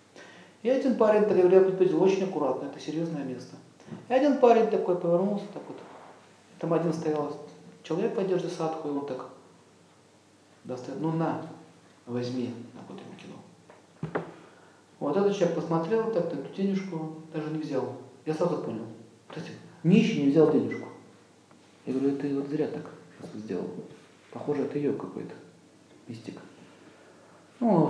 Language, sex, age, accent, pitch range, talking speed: Russian, male, 40-59, native, 140-185 Hz, 155 wpm